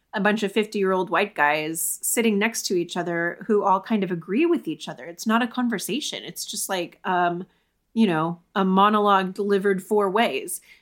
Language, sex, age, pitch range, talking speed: English, female, 20-39, 185-235 Hz, 200 wpm